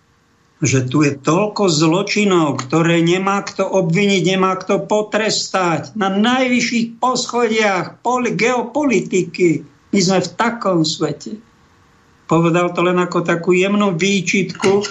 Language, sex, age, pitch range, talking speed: Slovak, male, 50-69, 145-190 Hz, 115 wpm